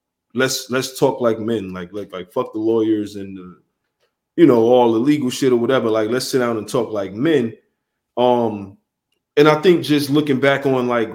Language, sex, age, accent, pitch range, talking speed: English, male, 20-39, American, 115-140 Hz, 205 wpm